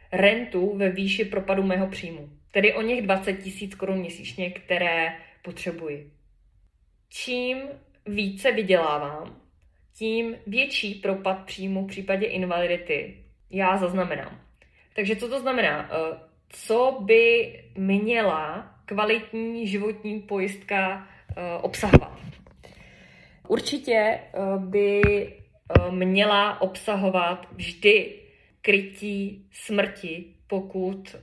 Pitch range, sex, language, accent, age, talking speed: 170-205 Hz, female, Czech, native, 20-39, 90 wpm